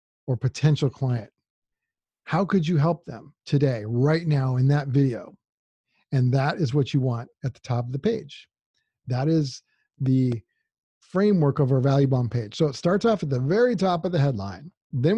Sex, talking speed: male, 185 wpm